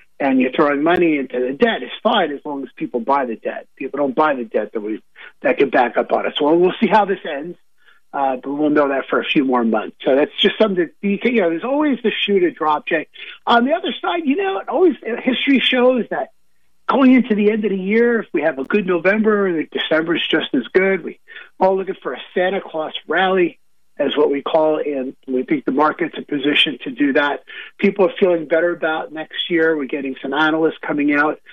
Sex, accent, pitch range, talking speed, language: male, American, 145-205 Hz, 245 wpm, English